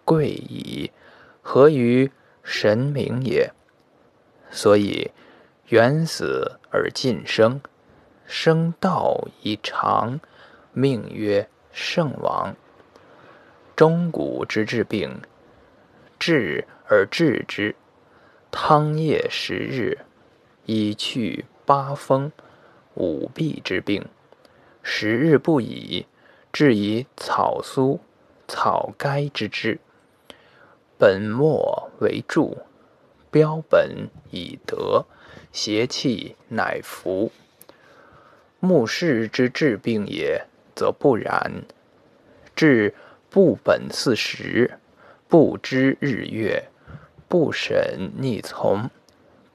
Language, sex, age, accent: Chinese, male, 20-39, native